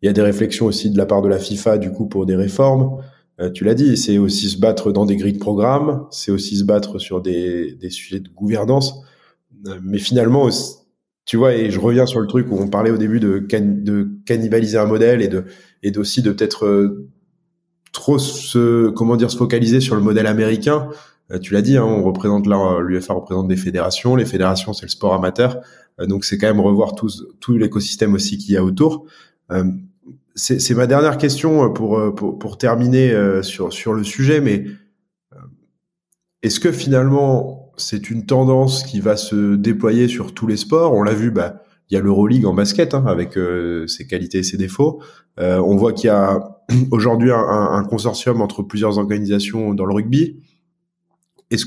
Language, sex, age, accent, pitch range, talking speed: French, male, 20-39, French, 100-130 Hz, 200 wpm